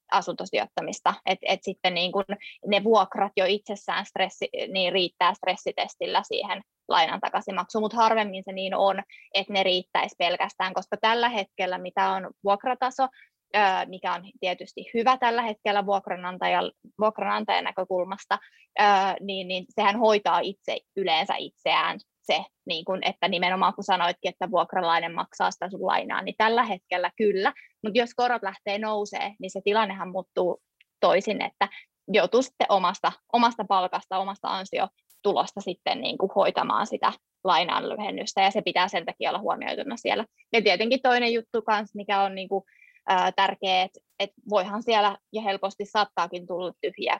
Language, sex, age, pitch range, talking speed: Finnish, female, 20-39, 185-220 Hz, 140 wpm